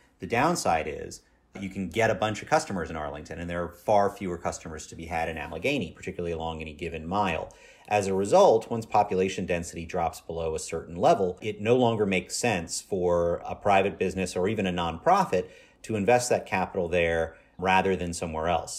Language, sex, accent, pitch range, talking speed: English, male, American, 85-100 Hz, 200 wpm